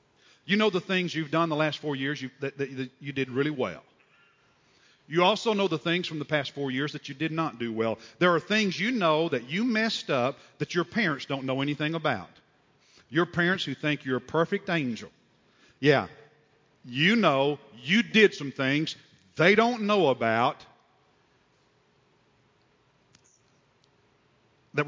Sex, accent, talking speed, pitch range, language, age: male, American, 165 wpm, 135-175 Hz, English, 50-69